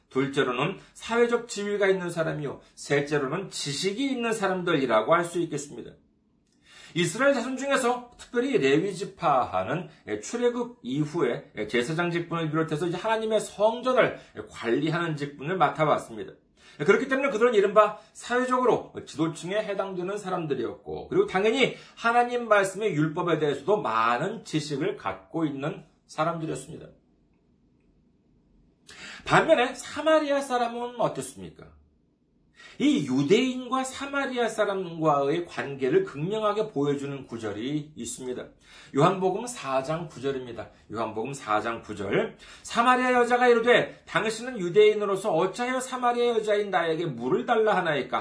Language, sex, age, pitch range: Korean, male, 40-59, 145-235 Hz